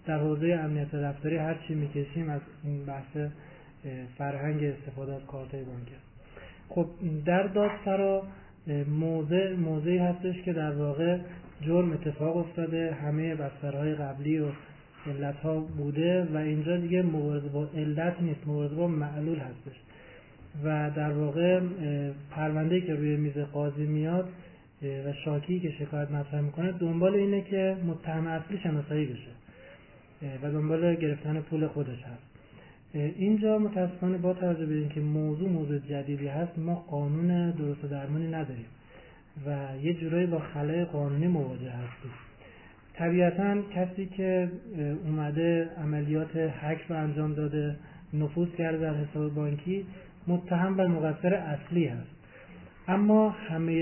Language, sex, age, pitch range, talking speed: Persian, male, 30-49, 145-175 Hz, 125 wpm